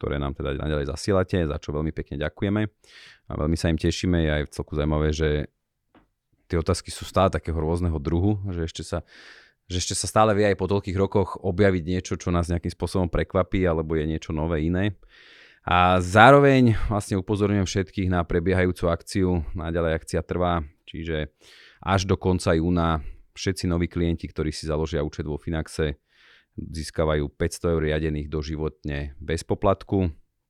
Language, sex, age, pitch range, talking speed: Slovak, male, 30-49, 75-90 Hz, 165 wpm